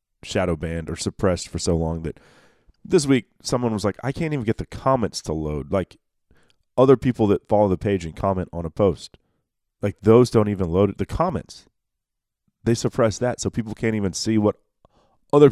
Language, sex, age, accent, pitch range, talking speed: English, male, 40-59, American, 85-115 Hz, 195 wpm